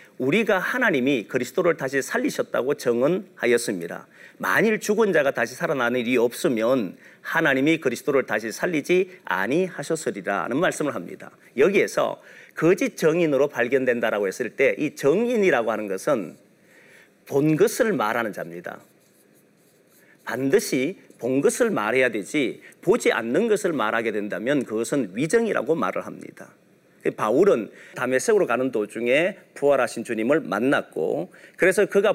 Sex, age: male, 40-59